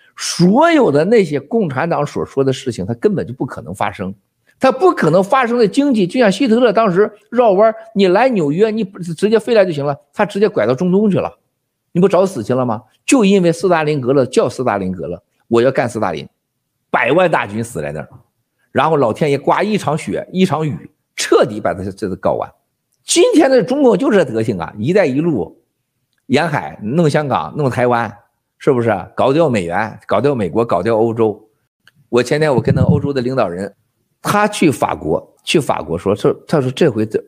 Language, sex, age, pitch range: Chinese, male, 50-69, 115-190 Hz